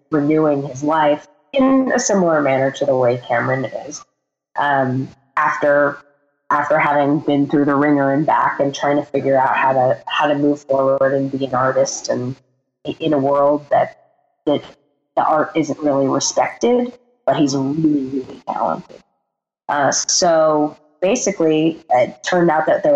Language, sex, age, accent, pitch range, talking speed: English, female, 30-49, American, 135-155 Hz, 160 wpm